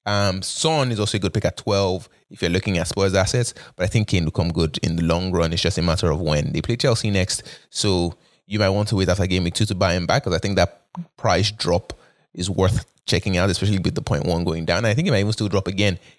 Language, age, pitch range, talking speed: English, 20-39, 95-120 Hz, 280 wpm